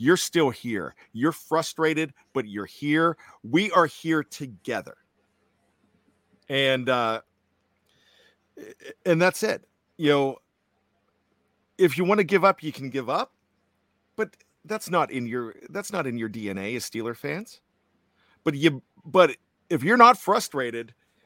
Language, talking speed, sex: English, 140 wpm, male